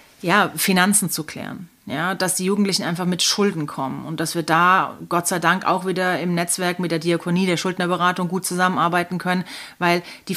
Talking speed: 190 wpm